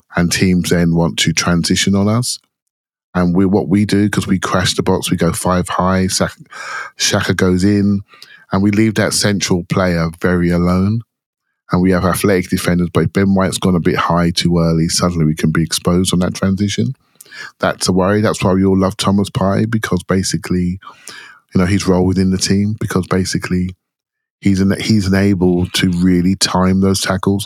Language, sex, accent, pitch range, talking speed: English, male, British, 90-100 Hz, 180 wpm